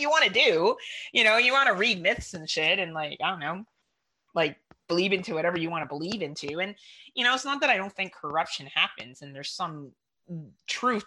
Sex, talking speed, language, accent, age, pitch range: female, 230 wpm, English, American, 30-49, 150-225 Hz